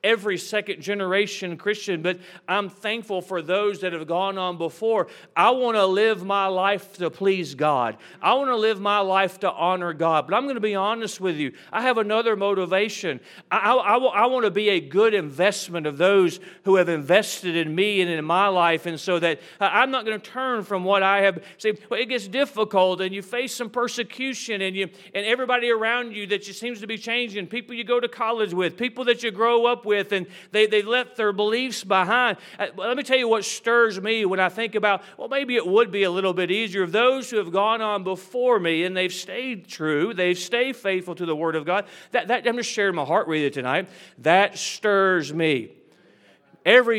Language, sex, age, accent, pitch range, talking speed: English, male, 40-59, American, 185-240 Hz, 220 wpm